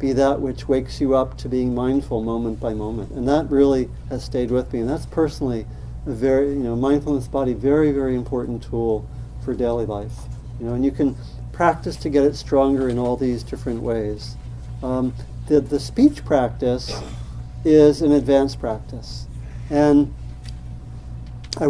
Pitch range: 110-145 Hz